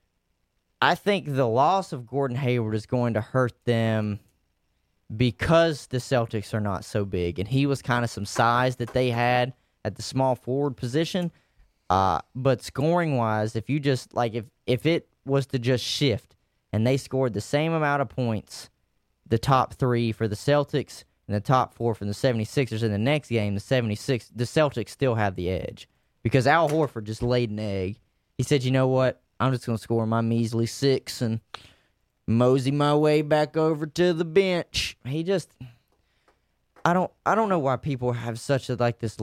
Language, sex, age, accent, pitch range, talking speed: English, male, 20-39, American, 105-140 Hz, 190 wpm